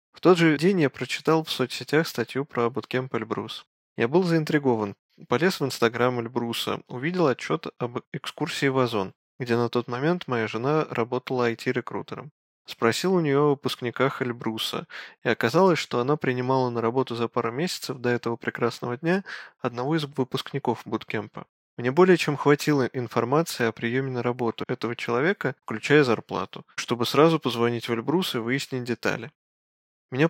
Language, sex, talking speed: Russian, male, 155 wpm